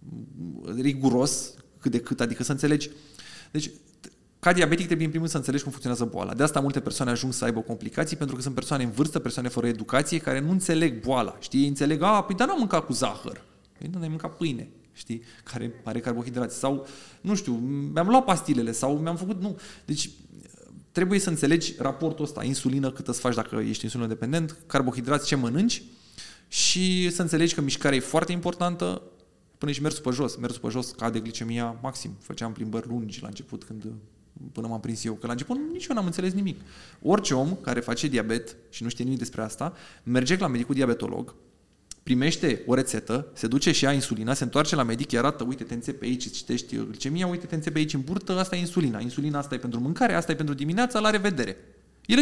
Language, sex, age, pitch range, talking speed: Romanian, male, 20-39, 120-170 Hz, 205 wpm